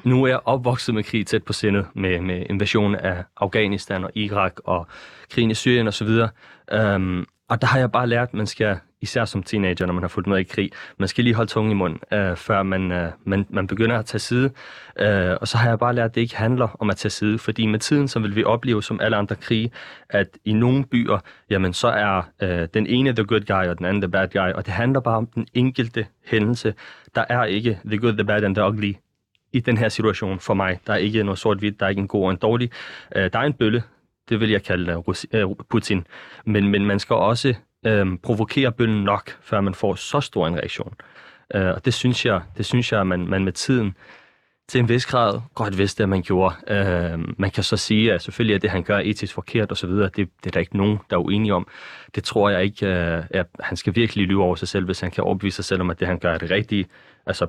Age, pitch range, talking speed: 30-49, 95-115 Hz, 245 wpm